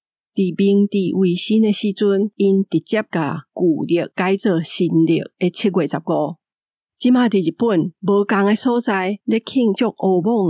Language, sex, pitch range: Chinese, female, 175-210 Hz